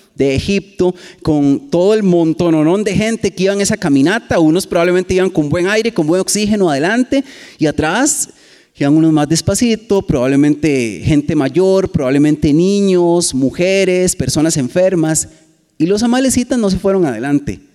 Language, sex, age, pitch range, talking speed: Spanish, male, 30-49, 145-205 Hz, 150 wpm